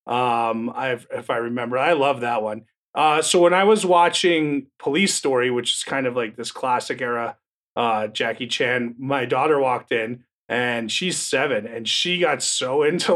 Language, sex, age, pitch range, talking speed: English, male, 30-49, 125-175 Hz, 180 wpm